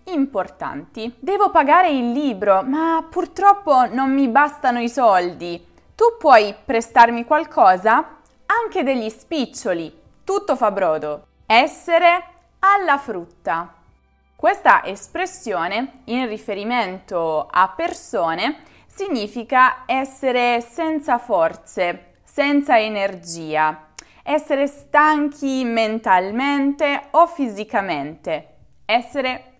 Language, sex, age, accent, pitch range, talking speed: Italian, female, 20-39, native, 190-285 Hz, 85 wpm